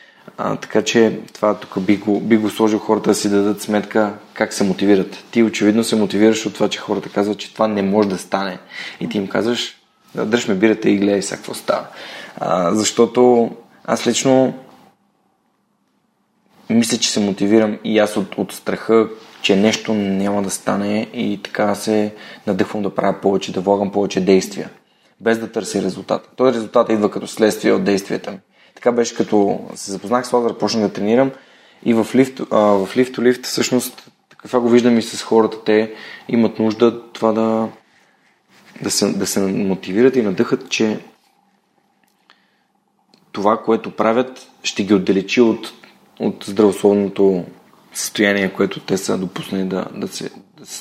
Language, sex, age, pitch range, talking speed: Bulgarian, male, 20-39, 100-115 Hz, 165 wpm